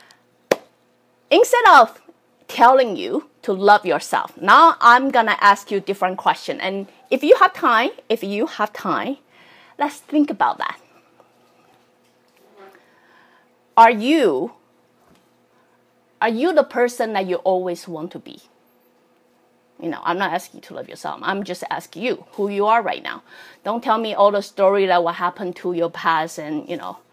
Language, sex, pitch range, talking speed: English, female, 195-310 Hz, 165 wpm